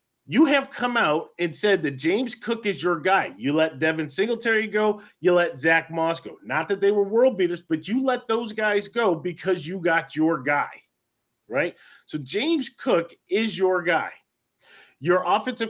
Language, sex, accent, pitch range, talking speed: English, male, American, 180-250 Hz, 185 wpm